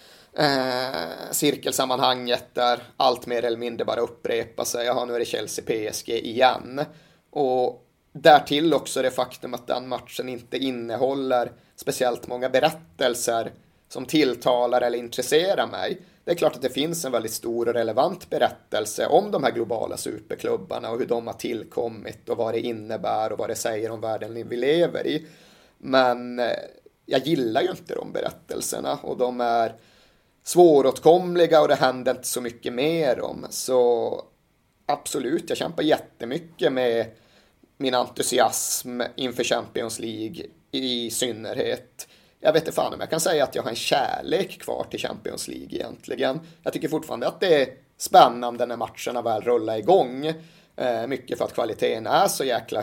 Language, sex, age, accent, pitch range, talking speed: English, male, 30-49, Swedish, 120-155 Hz, 160 wpm